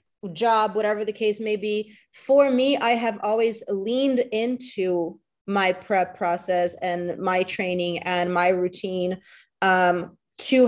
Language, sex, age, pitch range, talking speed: English, female, 30-49, 185-225 Hz, 135 wpm